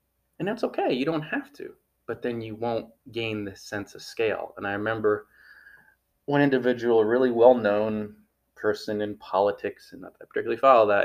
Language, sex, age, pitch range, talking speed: English, male, 20-39, 100-130 Hz, 175 wpm